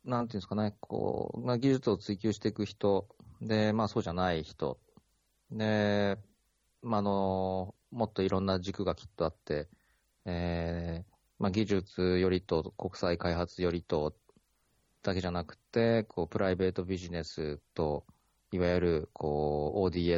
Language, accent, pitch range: Japanese, native, 85-110 Hz